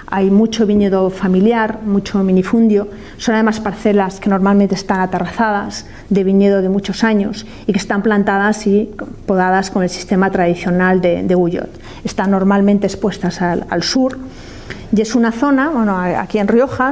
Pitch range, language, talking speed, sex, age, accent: 180-215 Hz, Spanish, 155 wpm, female, 40-59, Spanish